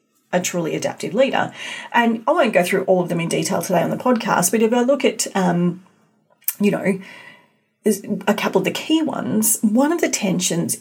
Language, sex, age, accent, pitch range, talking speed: English, female, 40-59, Australian, 185-240 Hz, 195 wpm